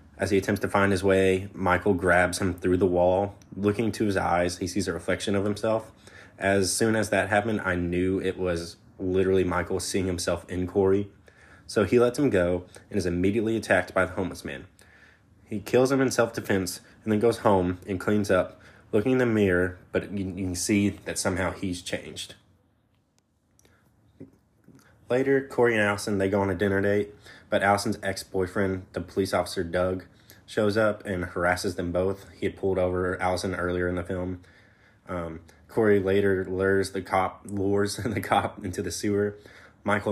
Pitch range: 90-105 Hz